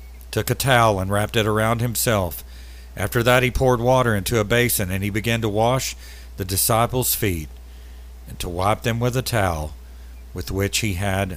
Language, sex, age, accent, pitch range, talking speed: English, male, 50-69, American, 75-120 Hz, 185 wpm